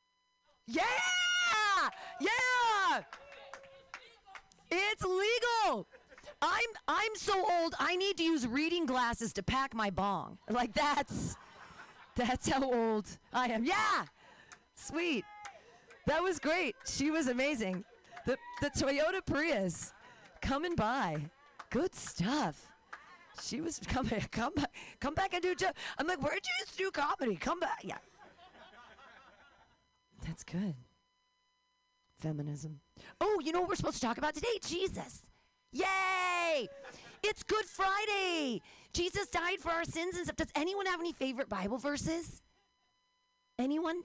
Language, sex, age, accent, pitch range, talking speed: English, female, 40-59, American, 245-385 Hz, 130 wpm